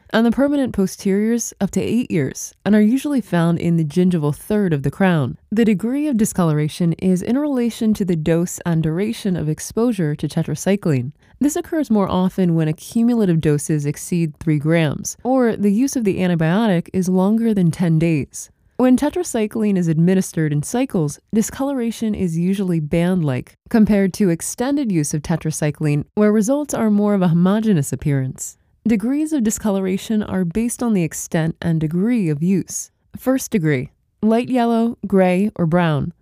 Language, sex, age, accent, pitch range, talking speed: English, female, 20-39, American, 165-225 Hz, 165 wpm